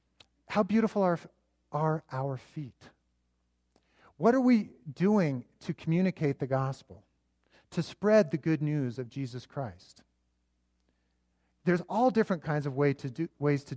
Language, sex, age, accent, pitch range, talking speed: English, male, 40-59, American, 115-160 Hz, 125 wpm